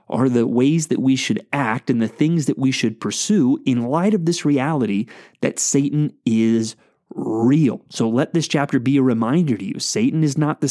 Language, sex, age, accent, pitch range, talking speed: English, male, 30-49, American, 125-170 Hz, 200 wpm